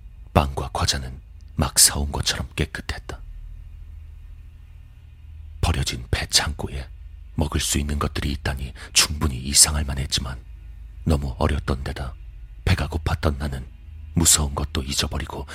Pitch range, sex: 75-80 Hz, male